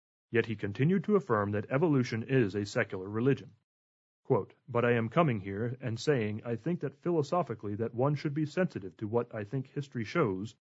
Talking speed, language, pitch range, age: 190 wpm, English, 110-145 Hz, 30-49